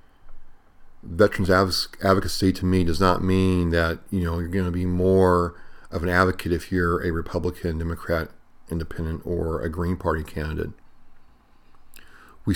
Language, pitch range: English, 85-90 Hz